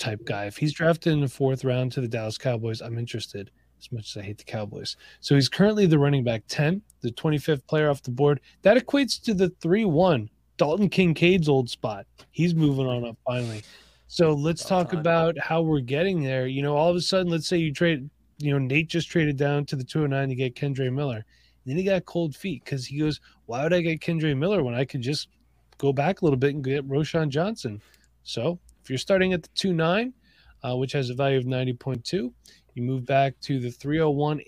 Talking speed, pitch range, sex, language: 225 wpm, 130-165 Hz, male, English